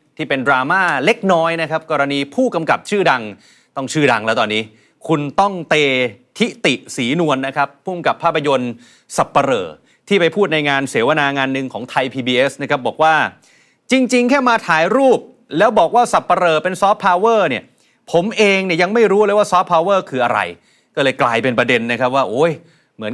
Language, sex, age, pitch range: Thai, male, 30-49, 135-185 Hz